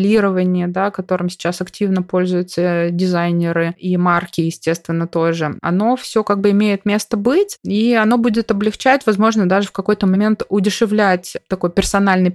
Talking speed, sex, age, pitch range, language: 140 wpm, female, 20-39, 180-215 Hz, Russian